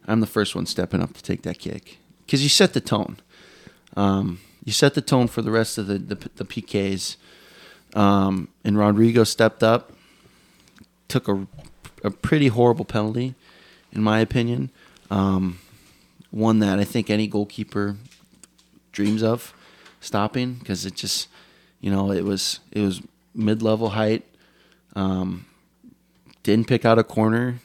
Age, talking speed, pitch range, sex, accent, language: 20-39, 150 wpm, 100-120 Hz, male, American, English